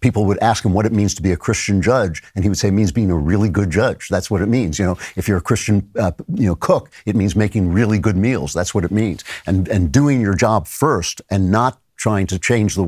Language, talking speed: English, 275 wpm